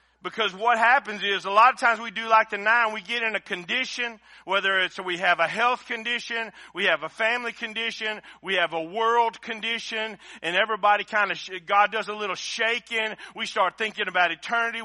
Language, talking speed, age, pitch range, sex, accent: English, 200 wpm, 40-59, 180-225 Hz, male, American